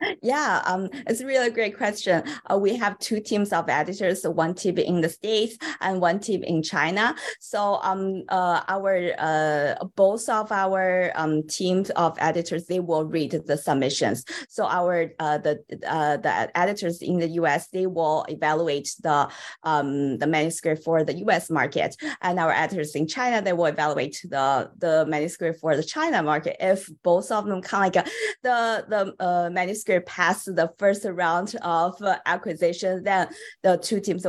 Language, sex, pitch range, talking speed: English, female, 155-190 Hz, 175 wpm